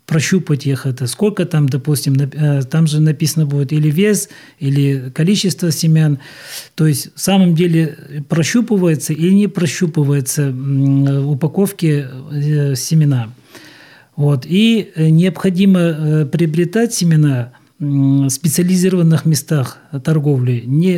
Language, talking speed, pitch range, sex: Russian, 105 wpm, 145-170 Hz, male